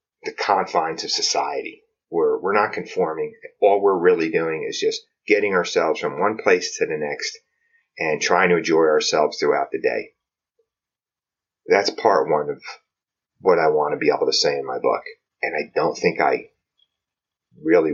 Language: English